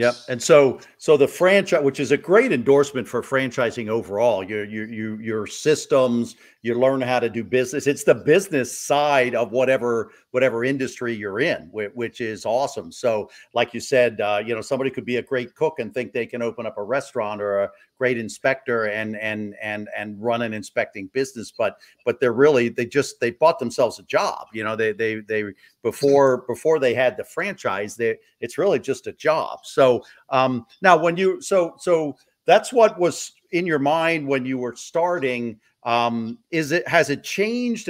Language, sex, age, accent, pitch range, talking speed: English, male, 50-69, American, 115-140 Hz, 195 wpm